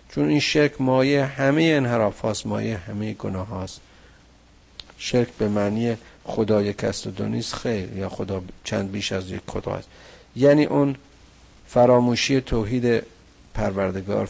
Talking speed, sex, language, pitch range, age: 125 wpm, male, Persian, 100-135 Hz, 50-69